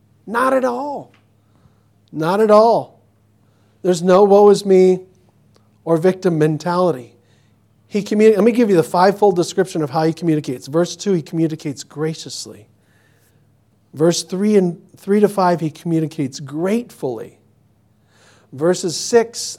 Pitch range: 120-180 Hz